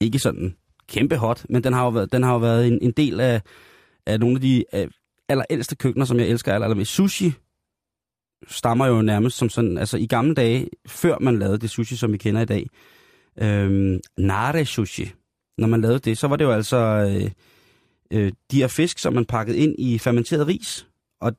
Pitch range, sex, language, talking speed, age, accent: 105-130 Hz, male, Danish, 205 wpm, 30-49, native